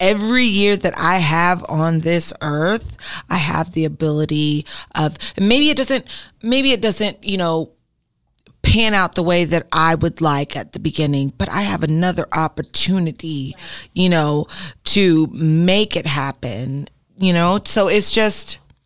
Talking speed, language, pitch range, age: 155 wpm, English, 155-185 Hz, 30-49